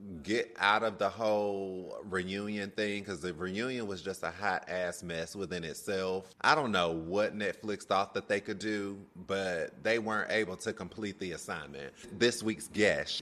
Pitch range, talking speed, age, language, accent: 100-125 Hz, 175 wpm, 30-49, English, American